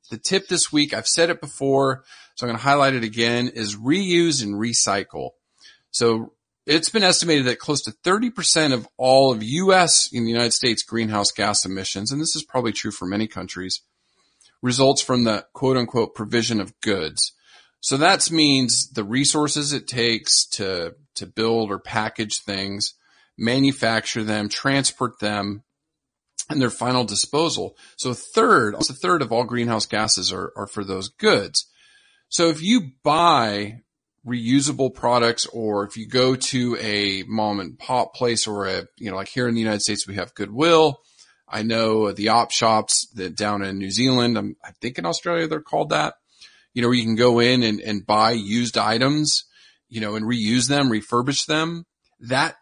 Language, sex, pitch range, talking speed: English, male, 110-145 Hz, 180 wpm